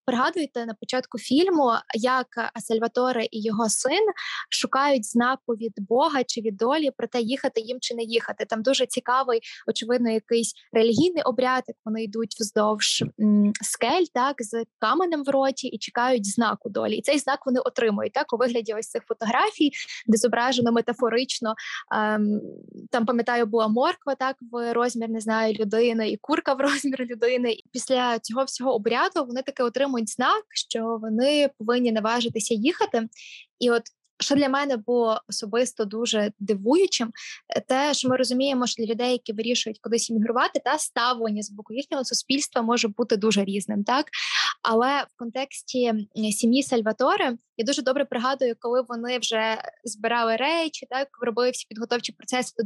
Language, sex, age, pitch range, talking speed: Ukrainian, female, 20-39, 225-260 Hz, 155 wpm